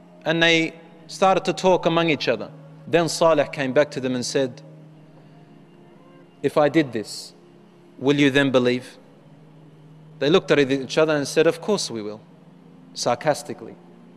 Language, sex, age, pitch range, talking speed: English, male, 30-49, 145-175 Hz, 150 wpm